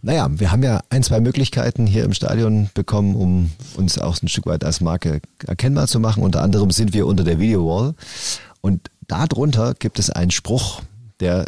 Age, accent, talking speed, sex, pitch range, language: 40-59, German, 190 wpm, male, 90-110 Hz, German